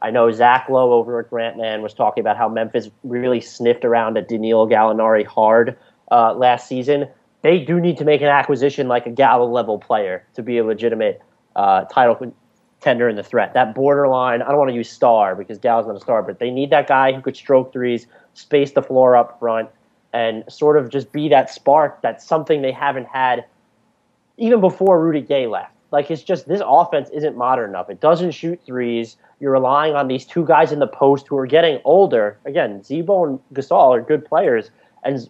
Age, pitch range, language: 30-49, 120-145 Hz, English